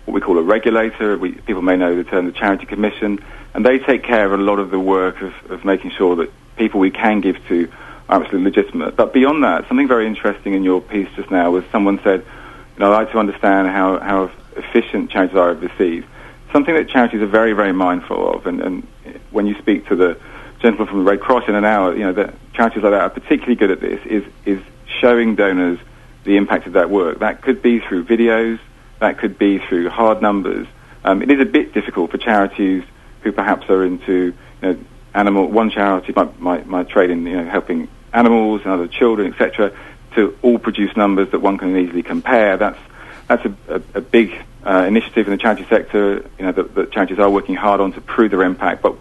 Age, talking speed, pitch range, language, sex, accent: 40-59, 220 wpm, 95-115 Hz, English, male, British